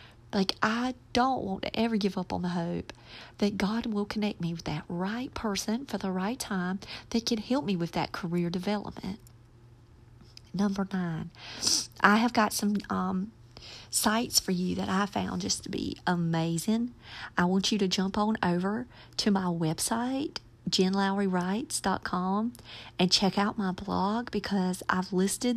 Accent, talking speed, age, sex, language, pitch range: American, 165 wpm, 40-59, female, English, 170-215 Hz